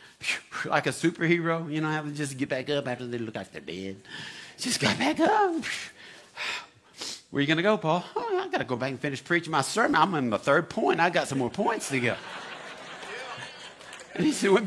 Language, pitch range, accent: English, 125-180 Hz, American